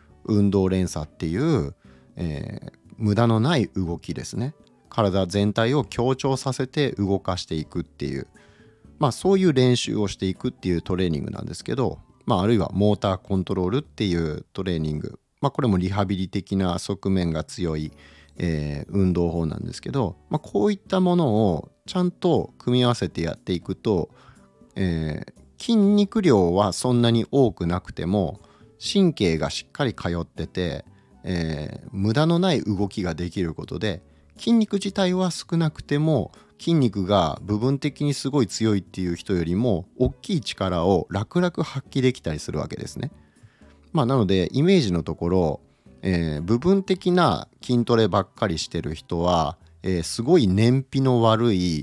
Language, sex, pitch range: Japanese, male, 85-130 Hz